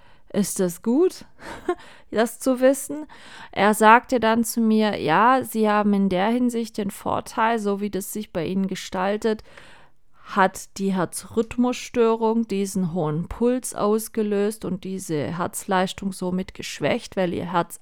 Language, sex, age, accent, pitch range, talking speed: German, female, 30-49, German, 185-210 Hz, 140 wpm